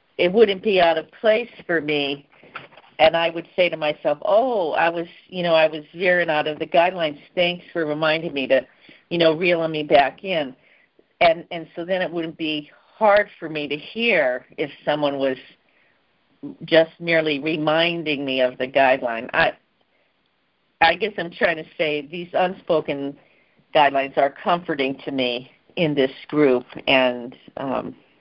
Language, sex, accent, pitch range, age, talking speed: English, female, American, 135-165 Hz, 50-69, 165 wpm